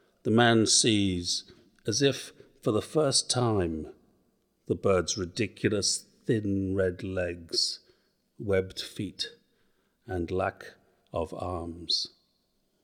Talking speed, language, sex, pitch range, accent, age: 100 wpm, English, male, 95-135 Hz, British, 50-69